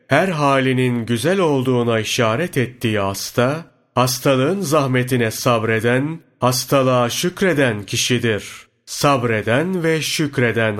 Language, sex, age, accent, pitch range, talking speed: Turkish, male, 40-59, native, 115-140 Hz, 90 wpm